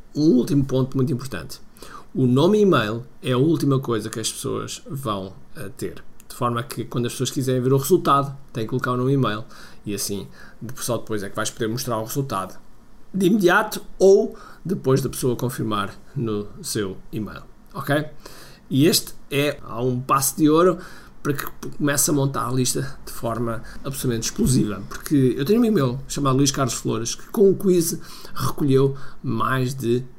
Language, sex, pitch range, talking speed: Portuguese, male, 120-160 Hz, 180 wpm